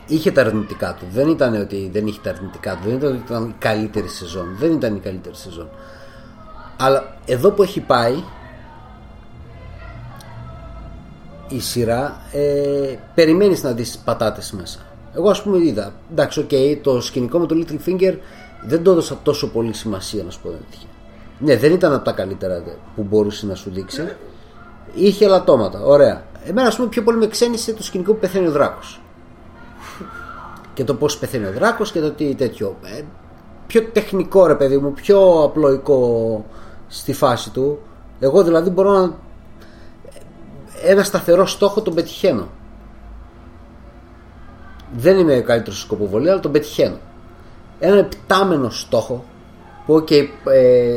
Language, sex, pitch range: Greek, male, 105-160 Hz